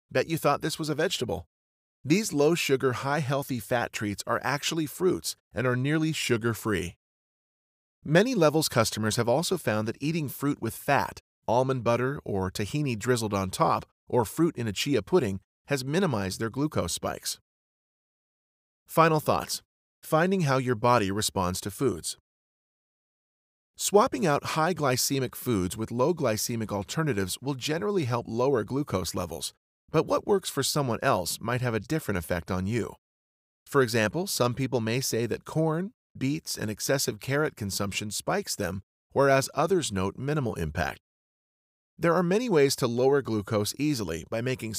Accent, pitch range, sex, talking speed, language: American, 105-145 Hz, male, 160 wpm, English